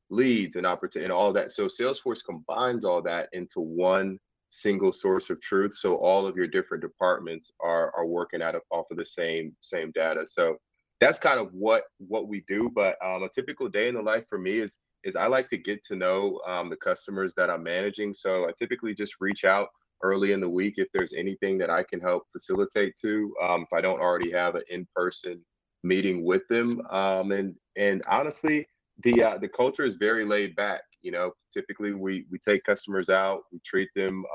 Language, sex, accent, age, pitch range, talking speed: English, male, American, 30-49, 90-110 Hz, 210 wpm